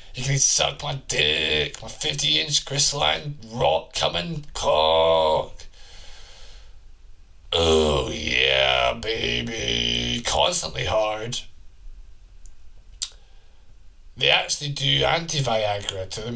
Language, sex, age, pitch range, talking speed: English, male, 30-49, 85-115 Hz, 75 wpm